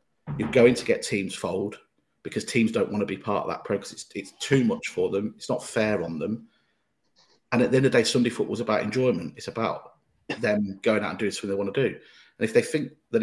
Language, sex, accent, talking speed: English, male, British, 255 wpm